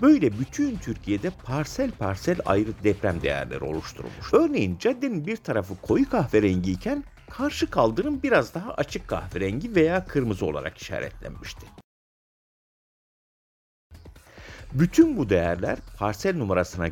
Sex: male